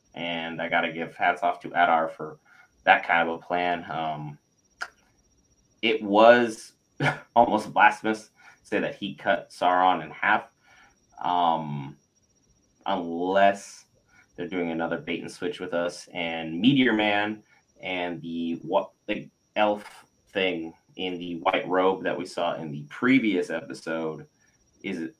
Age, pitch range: 30-49, 80-100 Hz